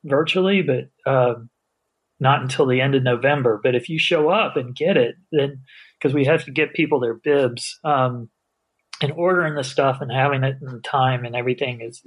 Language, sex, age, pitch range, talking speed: English, male, 30-49, 135-165 Hz, 195 wpm